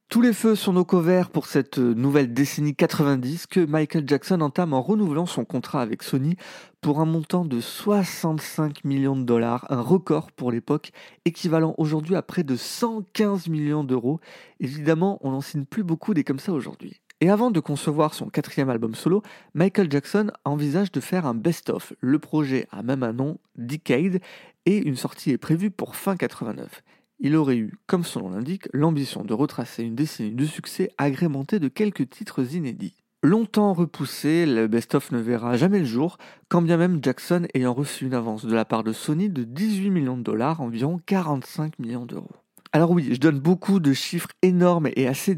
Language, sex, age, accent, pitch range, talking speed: French, male, 40-59, French, 130-180 Hz, 185 wpm